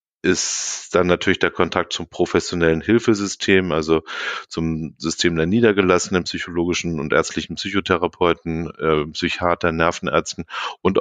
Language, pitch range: German, 80-95 Hz